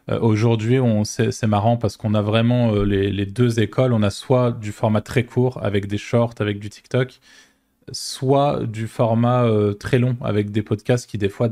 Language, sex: French, male